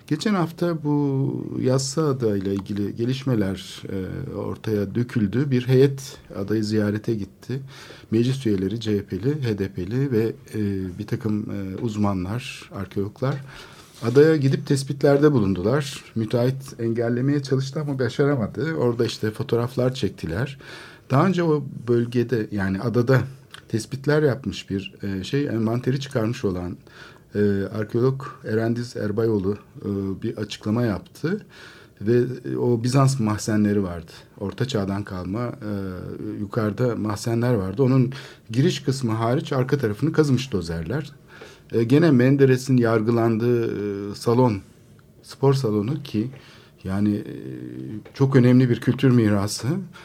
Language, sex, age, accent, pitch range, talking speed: Turkish, male, 50-69, native, 105-140 Hz, 115 wpm